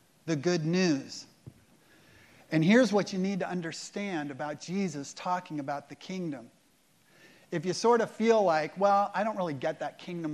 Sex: male